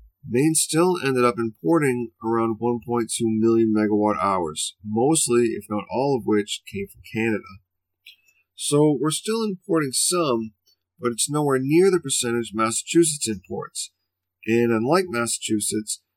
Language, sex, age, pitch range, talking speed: English, male, 40-59, 105-130 Hz, 130 wpm